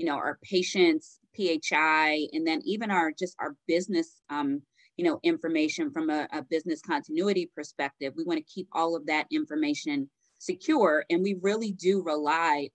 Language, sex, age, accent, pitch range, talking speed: English, female, 30-49, American, 160-250 Hz, 170 wpm